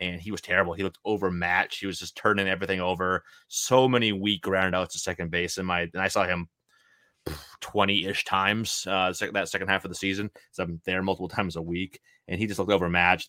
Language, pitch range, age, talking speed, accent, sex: English, 90-105 Hz, 30-49, 210 wpm, American, male